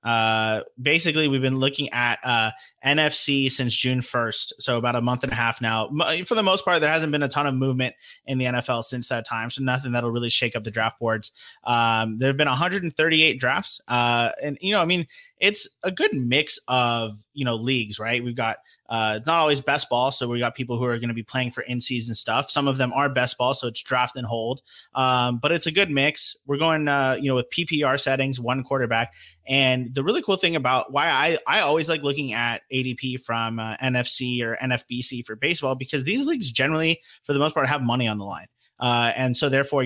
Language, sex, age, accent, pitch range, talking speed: English, male, 30-49, American, 115-140 Hz, 230 wpm